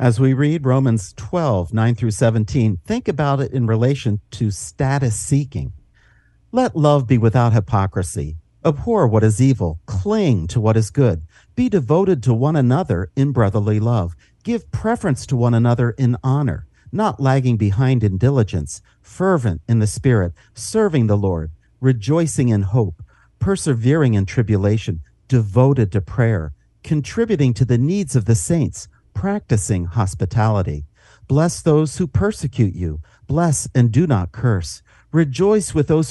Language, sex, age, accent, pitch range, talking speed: English, male, 50-69, American, 105-140 Hz, 145 wpm